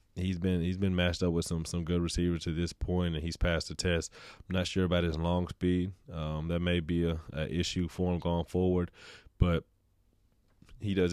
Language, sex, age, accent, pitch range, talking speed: English, male, 20-39, American, 80-90 Hz, 210 wpm